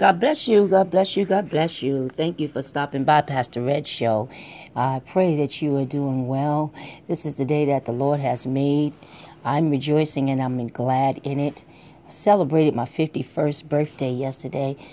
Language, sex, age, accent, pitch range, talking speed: English, female, 40-59, American, 130-160 Hz, 185 wpm